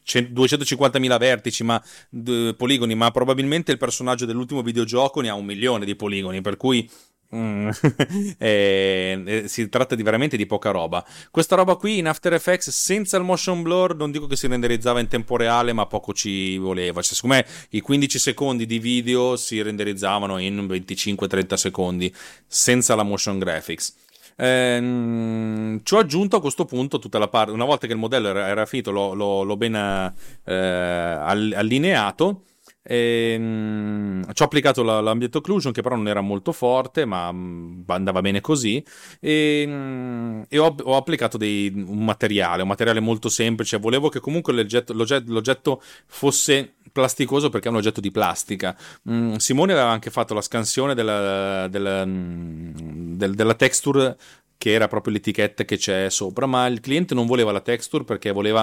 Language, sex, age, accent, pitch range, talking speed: Italian, male, 30-49, native, 100-135 Hz, 160 wpm